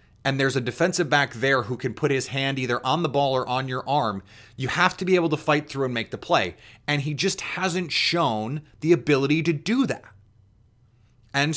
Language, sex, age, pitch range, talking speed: English, male, 30-49, 115-150 Hz, 220 wpm